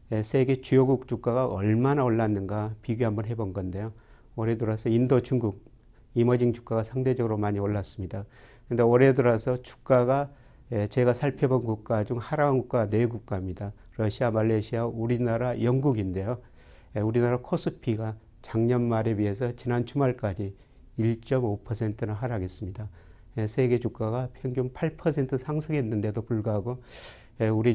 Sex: male